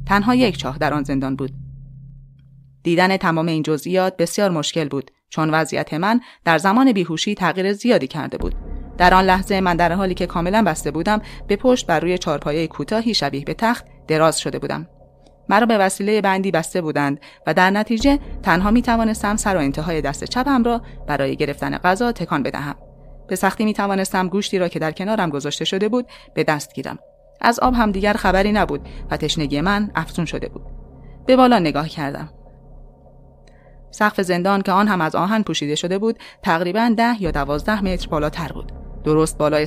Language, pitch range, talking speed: Persian, 150-210 Hz, 180 wpm